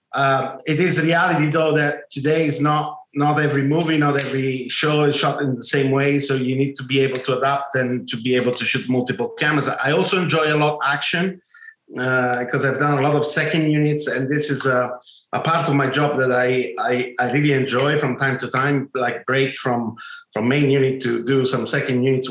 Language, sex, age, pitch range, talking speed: English, male, 50-69, 125-150 Hz, 225 wpm